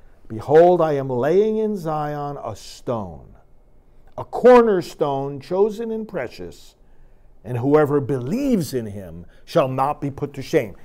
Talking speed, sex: 135 wpm, male